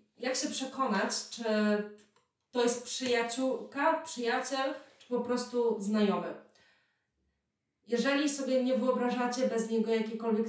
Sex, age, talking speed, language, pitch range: female, 20-39, 110 wpm, Polish, 215-280 Hz